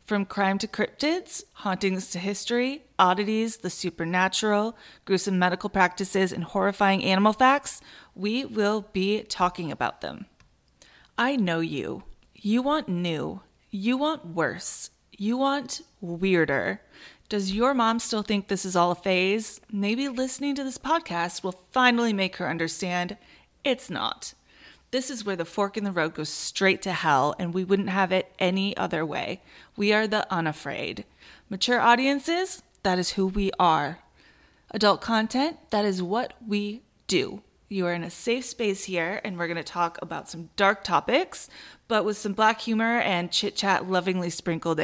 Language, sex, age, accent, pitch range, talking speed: English, female, 30-49, American, 180-235 Hz, 160 wpm